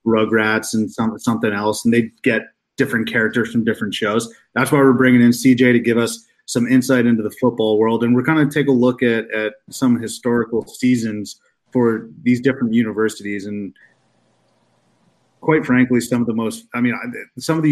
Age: 30-49